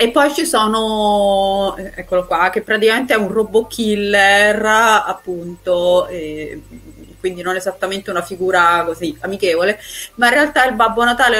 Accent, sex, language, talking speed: native, female, Italian, 140 wpm